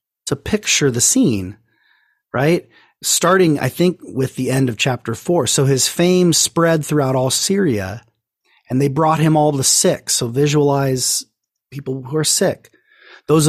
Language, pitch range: English, 115-155 Hz